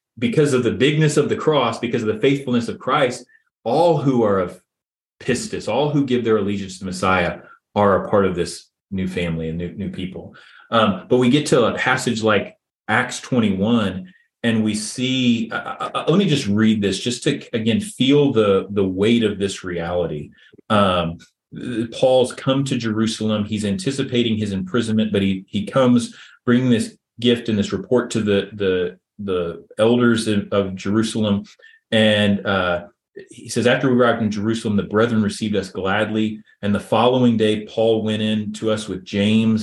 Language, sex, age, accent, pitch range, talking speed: English, male, 30-49, American, 100-125 Hz, 180 wpm